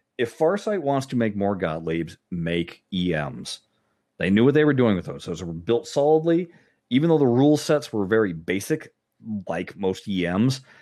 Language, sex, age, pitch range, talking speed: English, male, 40-59, 95-130 Hz, 175 wpm